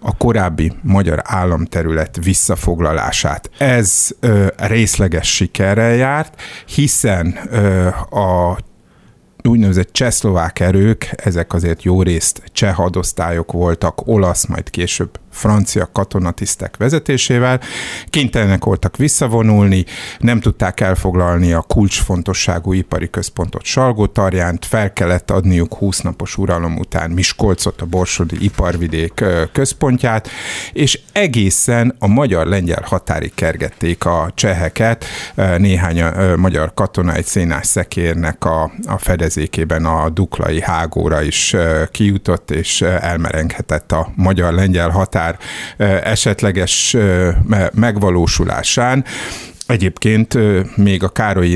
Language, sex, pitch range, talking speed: Hungarian, male, 85-105 Hz, 95 wpm